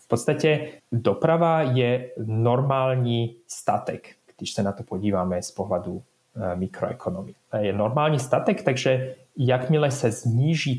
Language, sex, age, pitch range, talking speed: Czech, male, 30-49, 115-160 Hz, 115 wpm